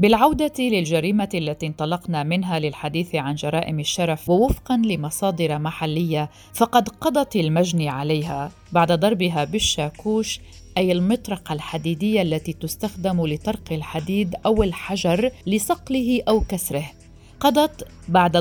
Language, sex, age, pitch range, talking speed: Arabic, female, 40-59, 155-210 Hz, 110 wpm